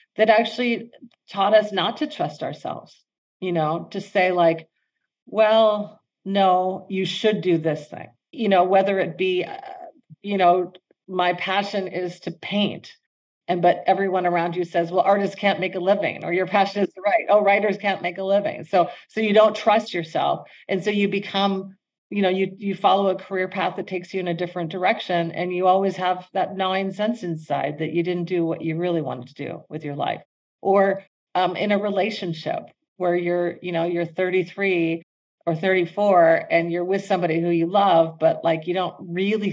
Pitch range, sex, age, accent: 175-200 Hz, female, 40-59, American